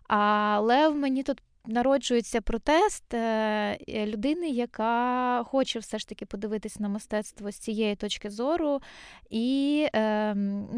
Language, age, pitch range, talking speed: Ukrainian, 20-39, 210-250 Hz, 130 wpm